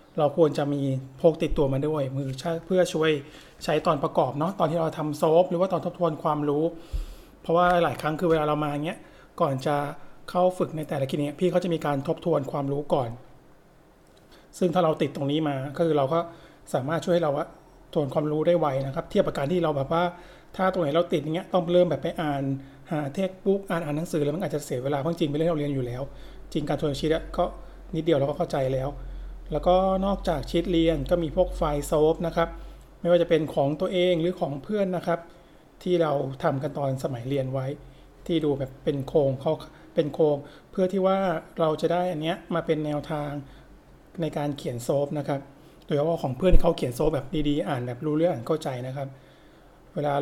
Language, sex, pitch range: Thai, male, 145-170 Hz